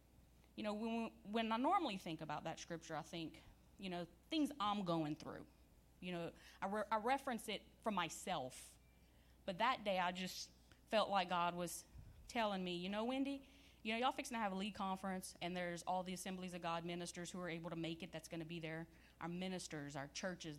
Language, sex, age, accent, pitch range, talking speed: English, female, 30-49, American, 155-205 Hz, 215 wpm